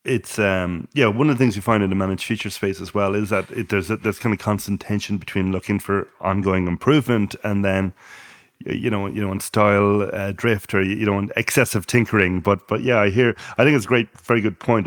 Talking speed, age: 240 wpm, 30-49